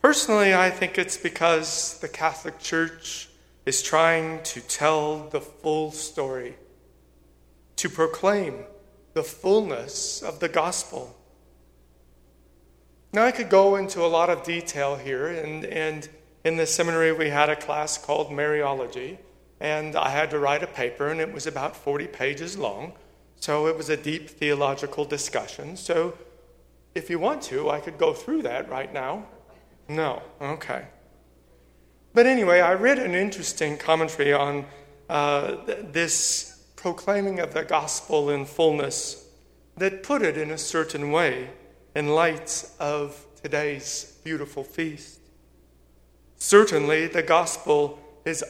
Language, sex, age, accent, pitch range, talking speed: English, male, 40-59, American, 140-175 Hz, 135 wpm